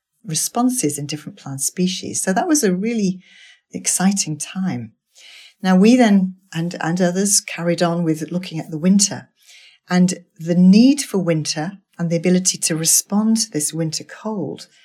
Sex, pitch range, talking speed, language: female, 160-195 Hz, 160 wpm, English